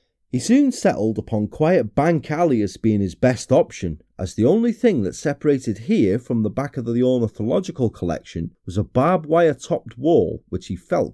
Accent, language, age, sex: British, English, 30-49, male